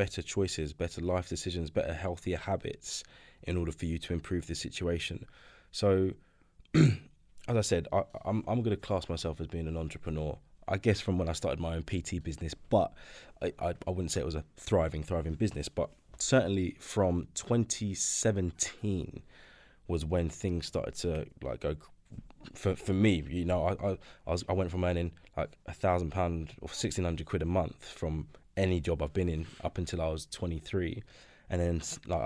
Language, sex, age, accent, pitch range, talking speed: English, male, 20-39, British, 85-95 Hz, 190 wpm